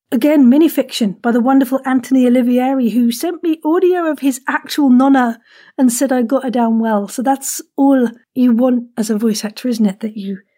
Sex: female